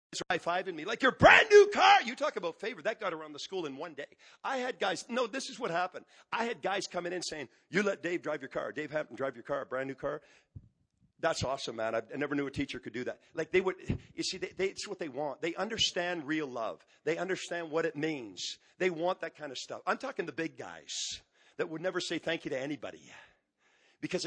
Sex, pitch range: male, 150-215 Hz